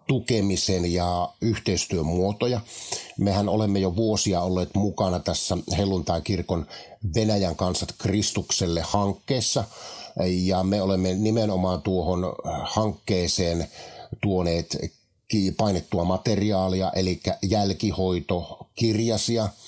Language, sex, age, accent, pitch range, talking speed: Finnish, male, 50-69, native, 85-105 Hz, 80 wpm